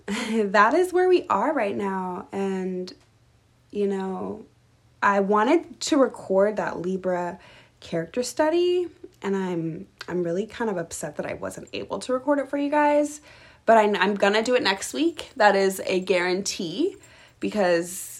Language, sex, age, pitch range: English, female, 20-39, 180-230 Hz